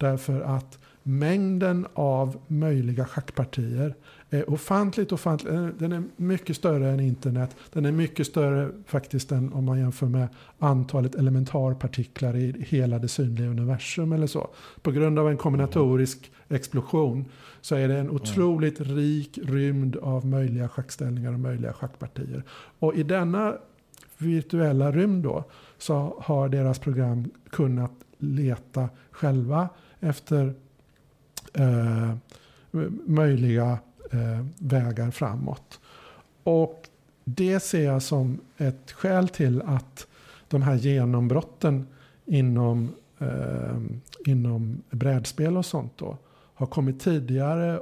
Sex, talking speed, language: male, 110 wpm, English